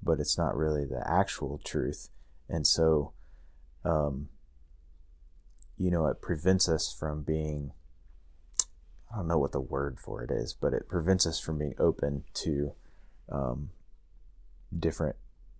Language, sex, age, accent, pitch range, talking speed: English, male, 30-49, American, 65-85 Hz, 140 wpm